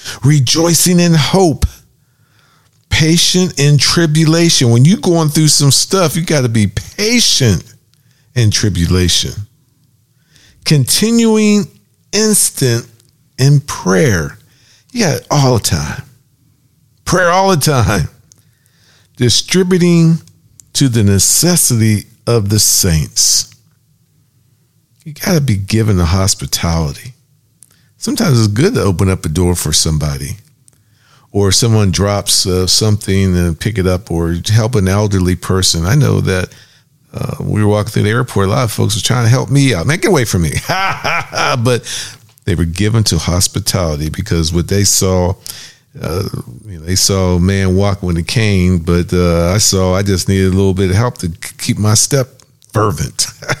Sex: male